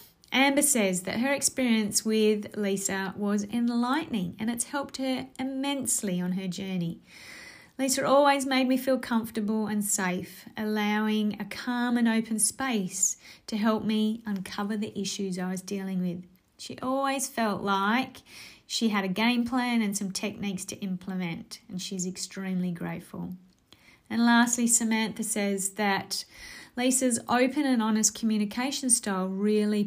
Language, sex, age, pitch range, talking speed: English, female, 30-49, 190-230 Hz, 145 wpm